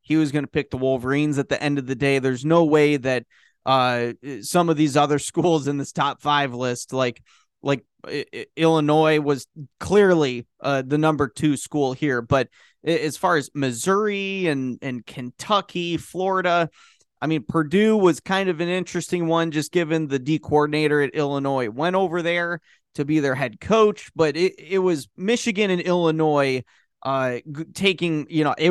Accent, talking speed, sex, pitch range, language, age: American, 175 wpm, male, 140-170 Hz, English, 20-39